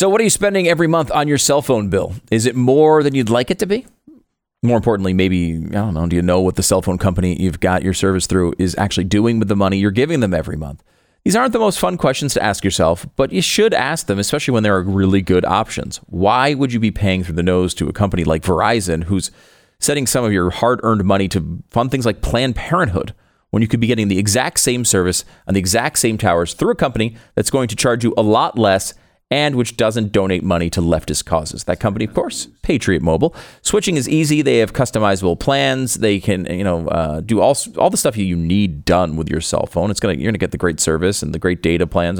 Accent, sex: American, male